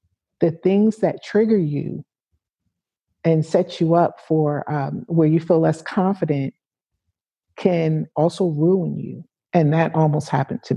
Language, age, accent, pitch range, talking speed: English, 50-69, American, 155-195 Hz, 140 wpm